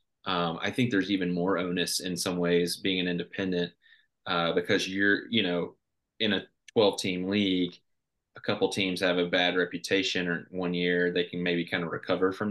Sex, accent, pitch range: male, American, 90-95 Hz